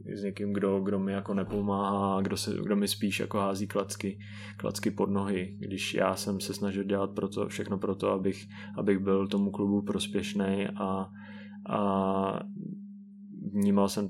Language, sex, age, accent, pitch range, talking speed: Czech, male, 20-39, native, 100-105 Hz, 160 wpm